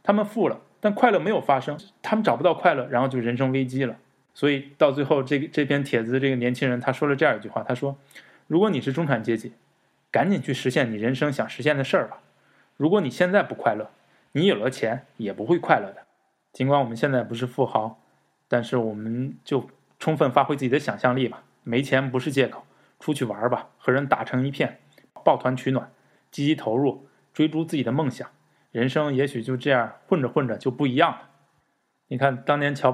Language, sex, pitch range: Chinese, male, 120-140 Hz